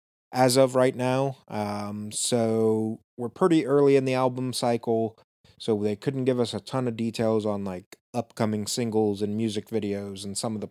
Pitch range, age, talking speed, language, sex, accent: 110-135 Hz, 20-39, 185 wpm, English, male, American